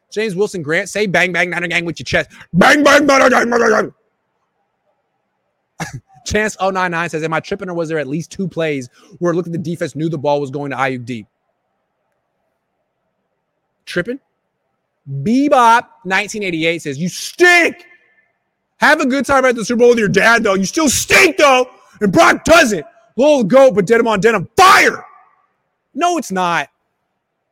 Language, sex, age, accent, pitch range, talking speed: English, male, 30-49, American, 165-270 Hz, 170 wpm